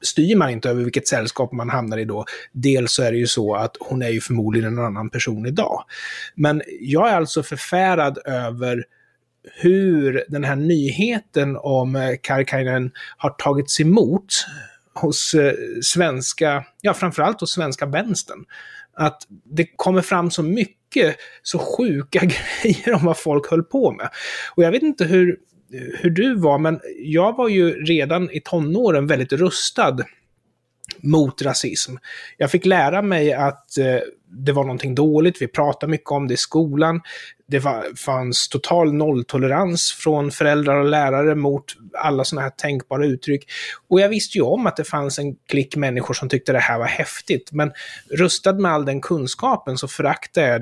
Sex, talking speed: male, 165 wpm